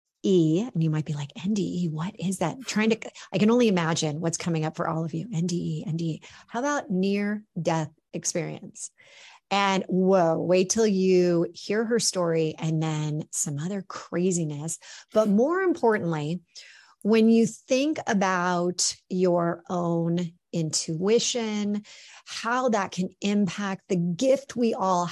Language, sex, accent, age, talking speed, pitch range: English, female, American, 40-59, 140 wpm, 170-225 Hz